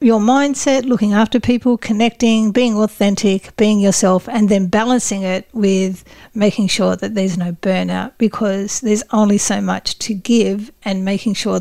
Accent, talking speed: Australian, 160 wpm